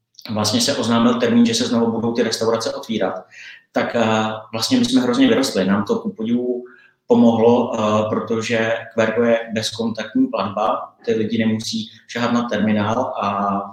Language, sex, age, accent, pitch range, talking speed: Czech, male, 30-49, native, 110-130 Hz, 155 wpm